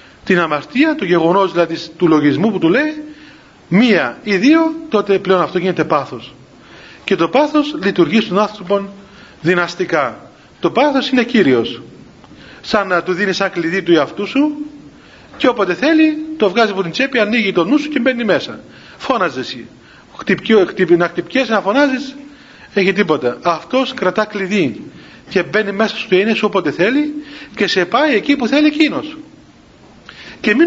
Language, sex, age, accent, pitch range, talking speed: Greek, male, 40-59, native, 185-270 Hz, 160 wpm